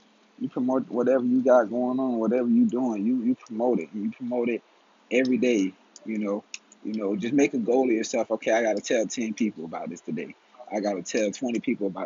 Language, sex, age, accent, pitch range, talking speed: English, male, 30-49, American, 95-115 Hz, 230 wpm